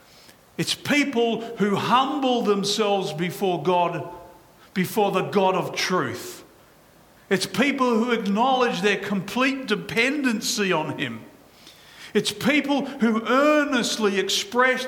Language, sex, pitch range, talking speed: English, male, 180-230 Hz, 105 wpm